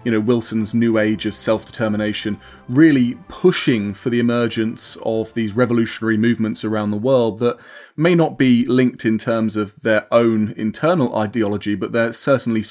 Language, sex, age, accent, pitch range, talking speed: English, male, 30-49, British, 110-135 Hz, 160 wpm